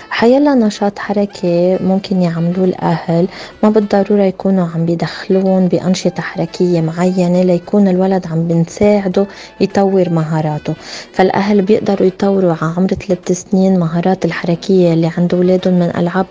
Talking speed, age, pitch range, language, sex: 120 wpm, 20-39, 180-200 Hz, Arabic, female